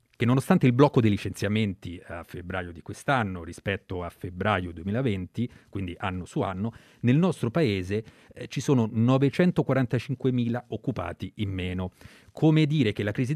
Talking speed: 150 wpm